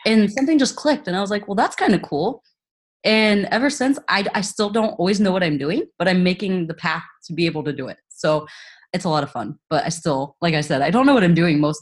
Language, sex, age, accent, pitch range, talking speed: English, female, 20-39, American, 145-185 Hz, 280 wpm